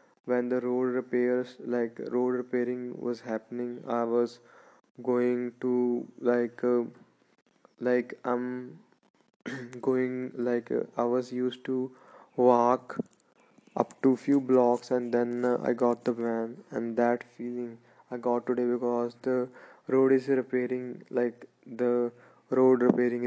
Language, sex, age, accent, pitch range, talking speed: English, male, 20-39, Indian, 120-130 Hz, 130 wpm